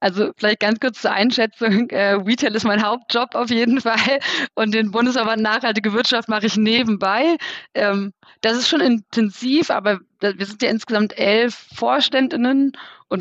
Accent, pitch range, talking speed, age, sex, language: German, 205-250 Hz, 150 wpm, 30-49, female, German